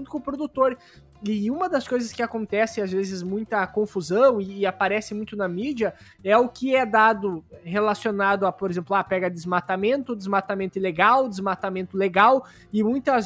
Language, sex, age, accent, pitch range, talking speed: Portuguese, male, 20-39, Brazilian, 205-250 Hz, 170 wpm